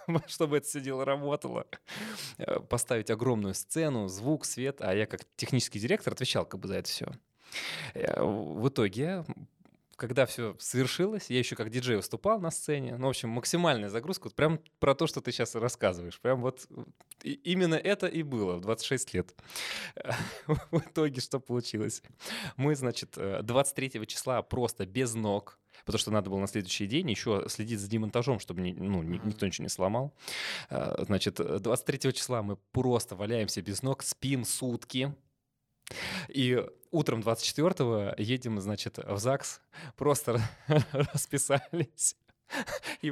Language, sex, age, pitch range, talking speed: Russian, male, 20-39, 115-150 Hz, 145 wpm